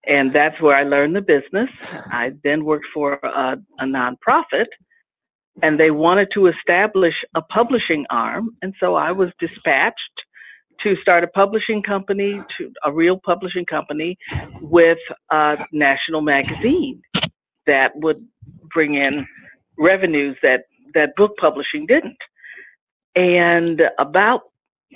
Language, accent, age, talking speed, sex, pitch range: English, American, 50-69, 125 wpm, female, 155-210 Hz